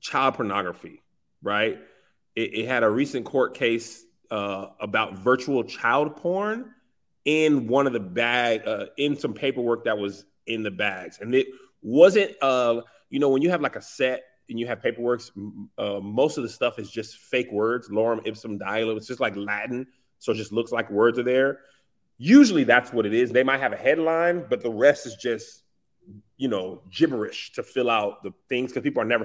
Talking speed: 195 wpm